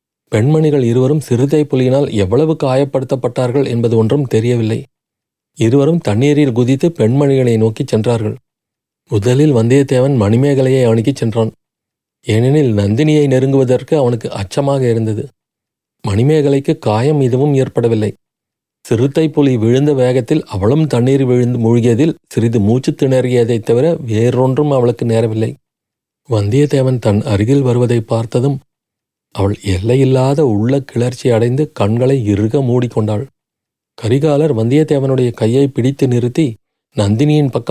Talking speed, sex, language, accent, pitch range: 100 wpm, male, Tamil, native, 115-140 Hz